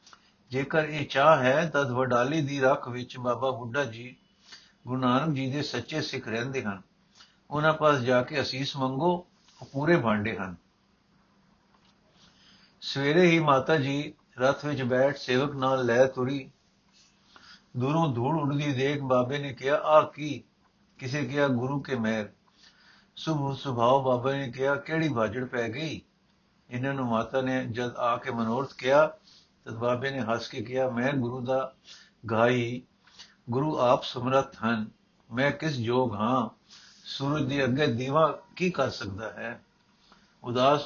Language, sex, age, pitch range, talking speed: Punjabi, male, 60-79, 125-150 Hz, 140 wpm